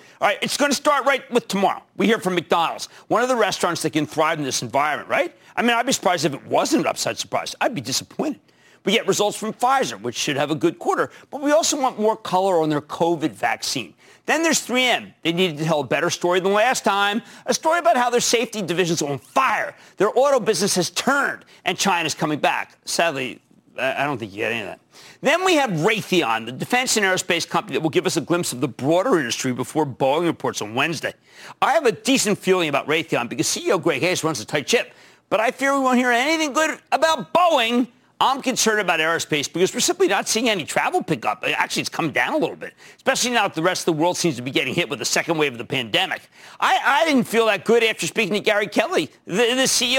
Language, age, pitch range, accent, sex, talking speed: English, 40-59, 165-250 Hz, American, male, 240 wpm